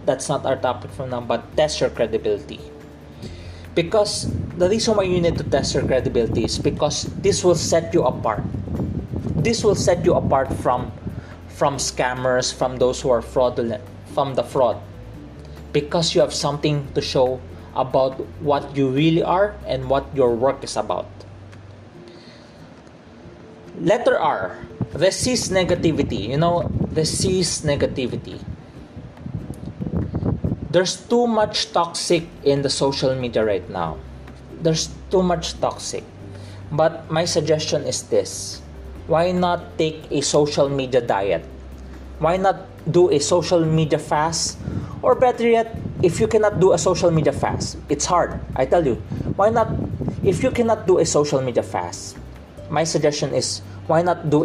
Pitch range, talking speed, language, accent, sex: 110-175 Hz, 145 wpm, English, Filipino, male